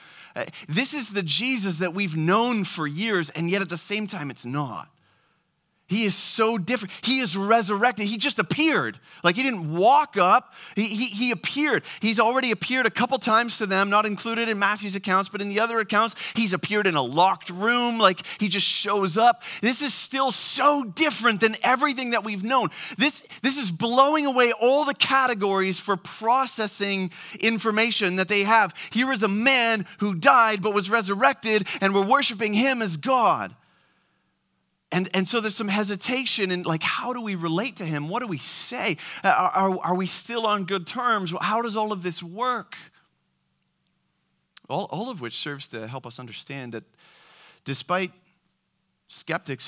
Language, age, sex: English, 30-49, male